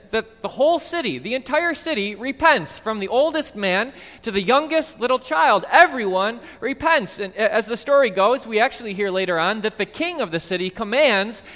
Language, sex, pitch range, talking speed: English, male, 155-240 Hz, 185 wpm